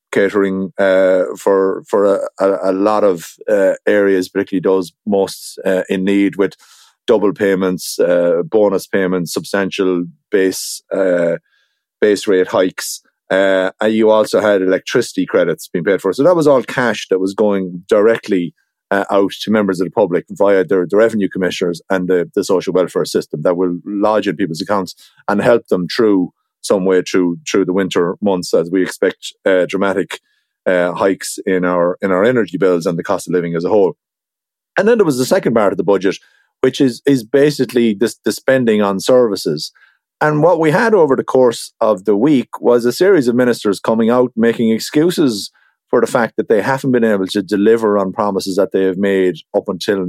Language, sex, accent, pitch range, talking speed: English, male, Irish, 95-115 Hz, 190 wpm